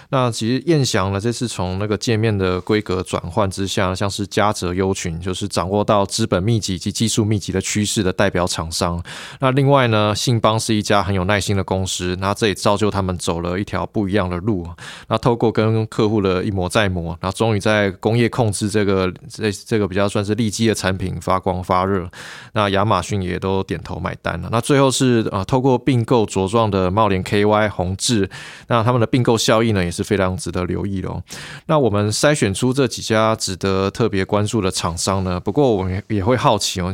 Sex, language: male, Chinese